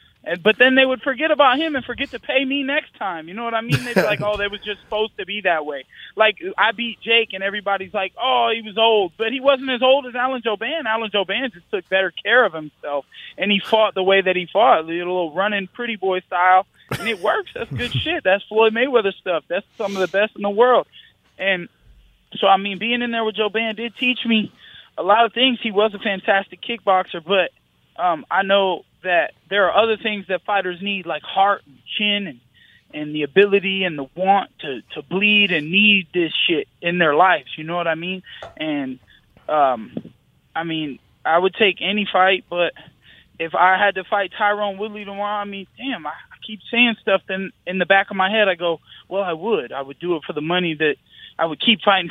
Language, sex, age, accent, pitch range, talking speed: English, male, 20-39, American, 180-225 Hz, 230 wpm